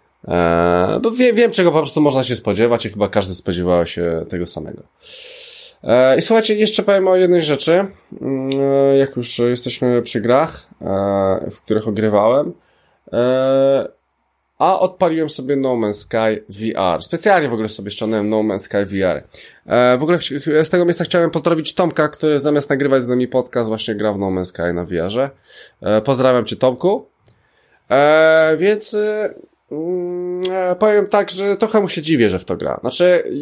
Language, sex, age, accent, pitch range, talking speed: Polish, male, 20-39, native, 110-185 Hz, 170 wpm